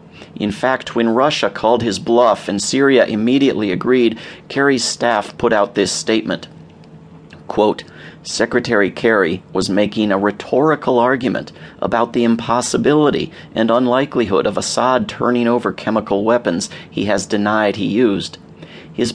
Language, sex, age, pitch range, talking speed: English, male, 40-59, 105-120 Hz, 130 wpm